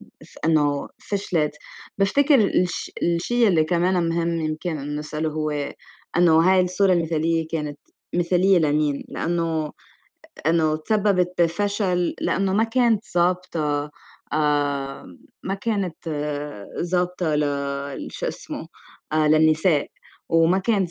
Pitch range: 165-215 Hz